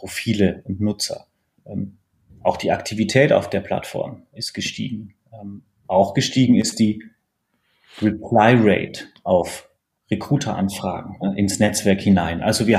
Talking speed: 125 wpm